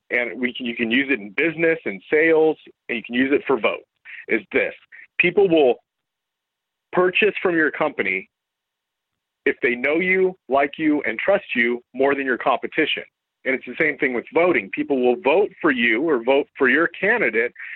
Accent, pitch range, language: American, 125-170 Hz, English